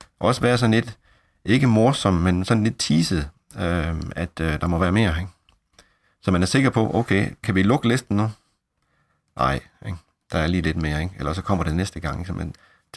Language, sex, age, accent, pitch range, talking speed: Danish, male, 40-59, native, 85-100 Hz, 215 wpm